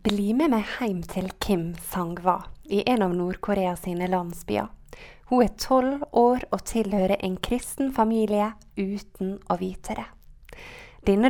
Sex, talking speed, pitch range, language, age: female, 150 wpm, 190-240 Hz, English, 20-39